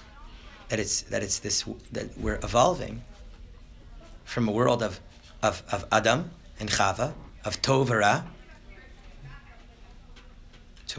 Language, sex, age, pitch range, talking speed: English, male, 30-49, 100-120 Hz, 110 wpm